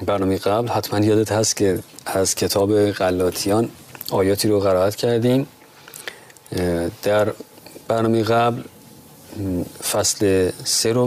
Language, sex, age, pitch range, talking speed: Persian, male, 40-59, 100-125 Hz, 105 wpm